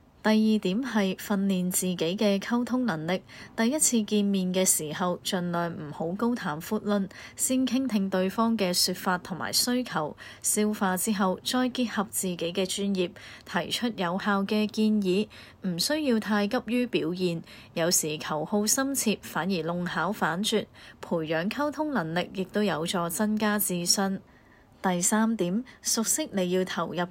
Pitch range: 175-215 Hz